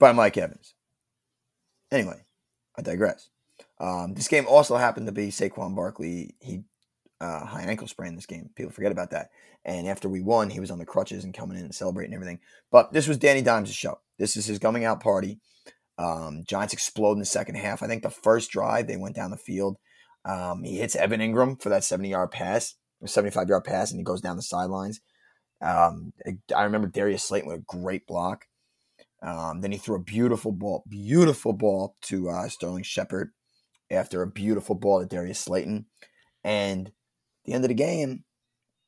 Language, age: English, 20-39